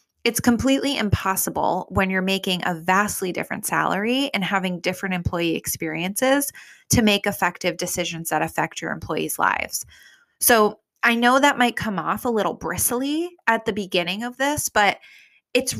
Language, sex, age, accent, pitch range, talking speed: English, female, 20-39, American, 175-225 Hz, 155 wpm